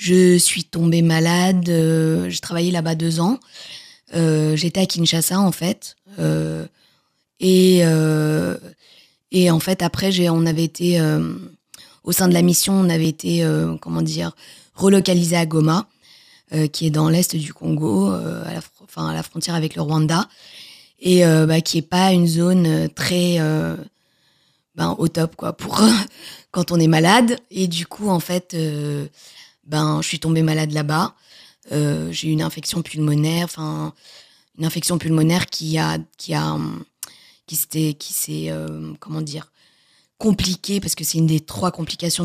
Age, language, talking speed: 20-39, French, 165 wpm